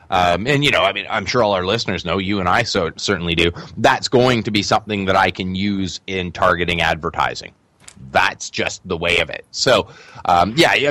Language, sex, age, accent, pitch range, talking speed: English, male, 30-49, American, 100-130 Hz, 215 wpm